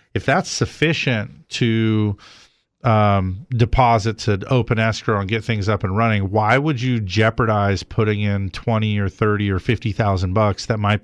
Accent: American